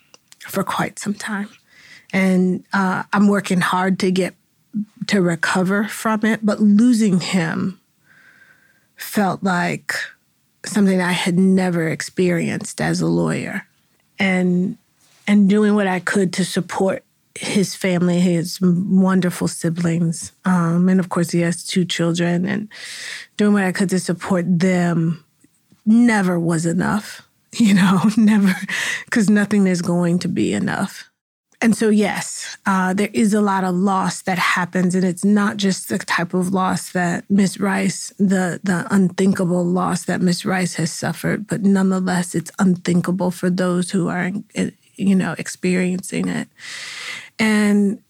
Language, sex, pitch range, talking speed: English, female, 180-205 Hz, 145 wpm